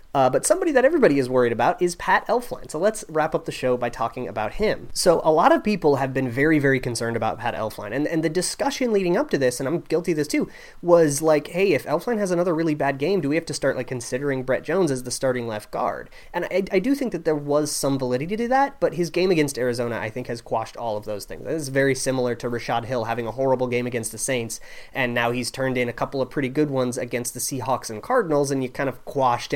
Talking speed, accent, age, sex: 265 wpm, American, 30-49, male